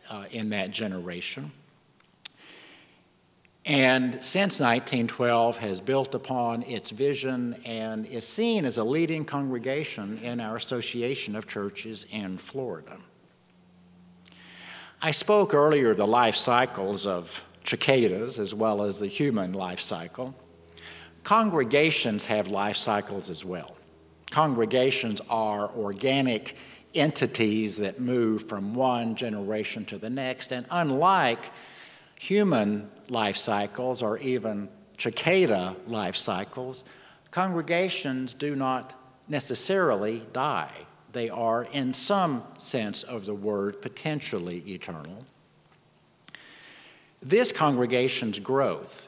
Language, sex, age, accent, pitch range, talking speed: English, male, 60-79, American, 105-130 Hz, 105 wpm